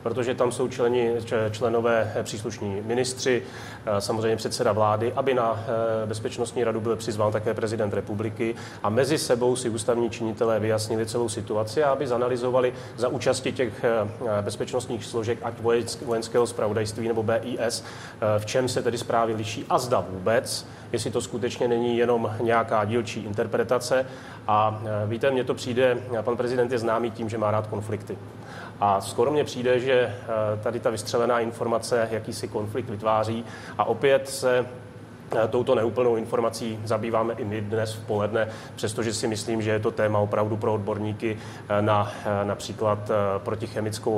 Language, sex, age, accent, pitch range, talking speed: Czech, male, 30-49, native, 110-120 Hz, 150 wpm